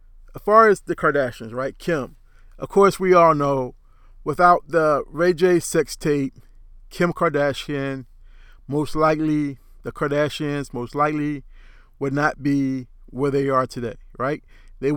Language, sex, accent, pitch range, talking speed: English, male, American, 120-155 Hz, 140 wpm